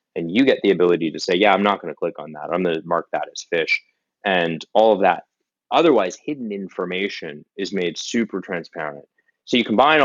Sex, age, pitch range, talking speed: male, 20-39, 90-110 Hz, 215 wpm